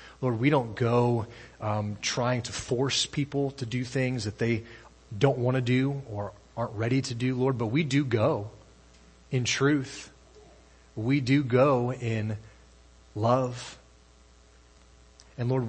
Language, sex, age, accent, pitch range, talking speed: English, male, 30-49, American, 105-140 Hz, 140 wpm